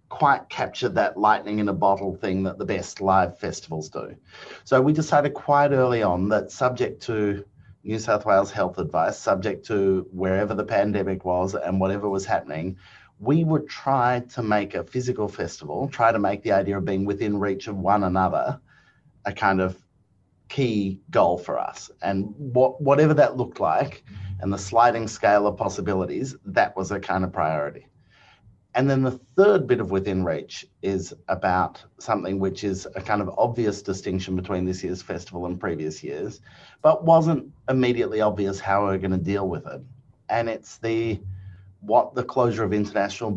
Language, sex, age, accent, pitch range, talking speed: English, male, 30-49, Australian, 95-120 Hz, 175 wpm